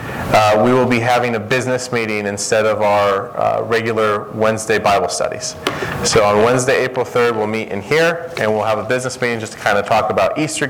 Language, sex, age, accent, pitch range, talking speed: English, male, 30-49, American, 110-140 Hz, 215 wpm